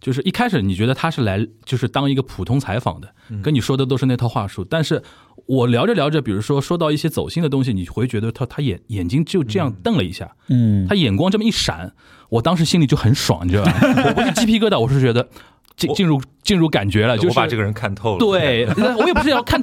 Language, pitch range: Chinese, 110-165 Hz